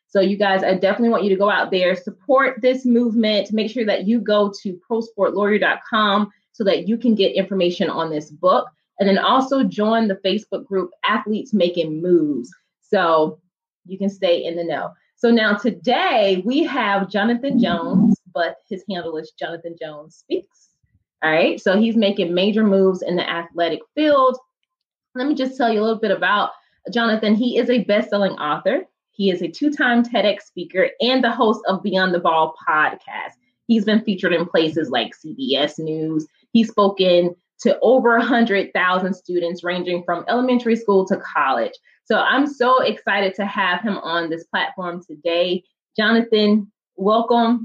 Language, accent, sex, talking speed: English, American, female, 170 wpm